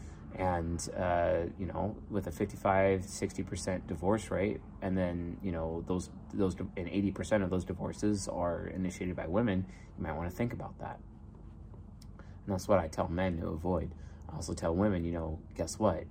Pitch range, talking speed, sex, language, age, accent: 90-110 Hz, 180 wpm, male, English, 30-49, American